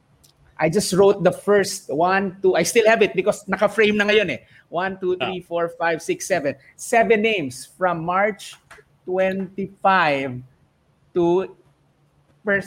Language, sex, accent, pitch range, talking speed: English, male, Filipino, 135-190 Hz, 140 wpm